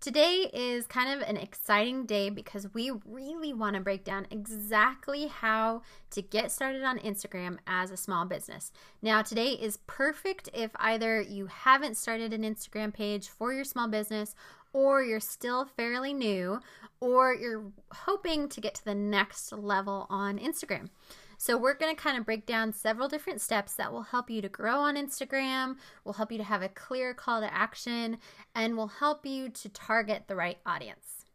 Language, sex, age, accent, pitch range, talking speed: English, female, 20-39, American, 205-255 Hz, 180 wpm